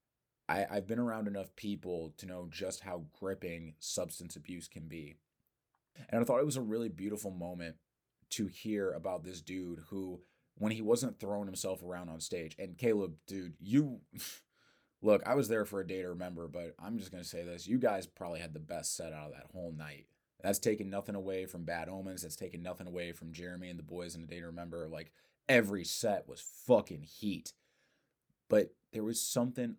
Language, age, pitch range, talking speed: English, 20-39, 85-100 Hz, 205 wpm